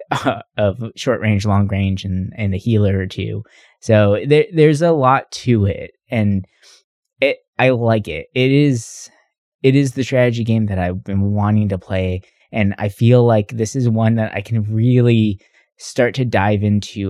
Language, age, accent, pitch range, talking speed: English, 20-39, American, 105-125 Hz, 185 wpm